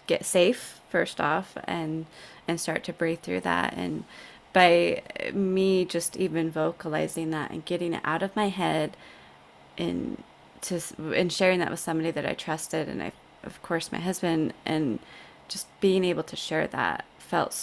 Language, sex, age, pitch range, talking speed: English, female, 20-39, 160-200 Hz, 165 wpm